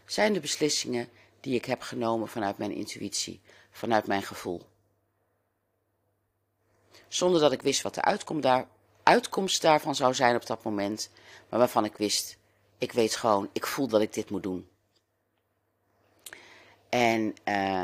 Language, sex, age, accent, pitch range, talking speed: Dutch, female, 40-59, Dutch, 110-165 Hz, 140 wpm